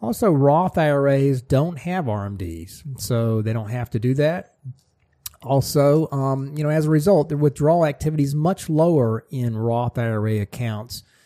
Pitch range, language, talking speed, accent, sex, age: 110-140 Hz, English, 160 wpm, American, male, 40-59